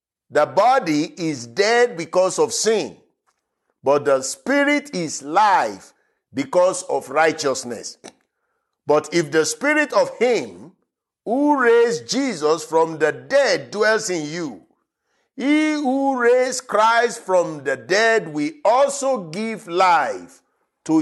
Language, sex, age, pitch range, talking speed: English, male, 50-69, 175-270 Hz, 120 wpm